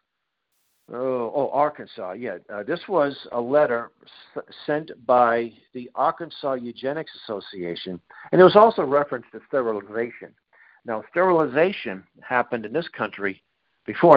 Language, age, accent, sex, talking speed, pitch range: English, 50-69, American, male, 125 wpm, 110-140 Hz